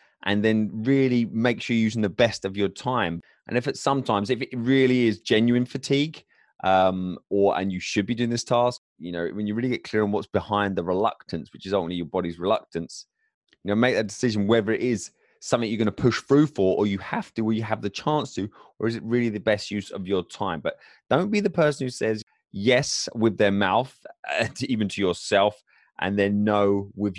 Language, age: English, 20-39